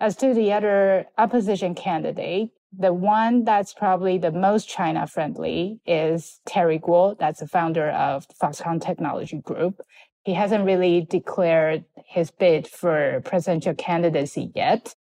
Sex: female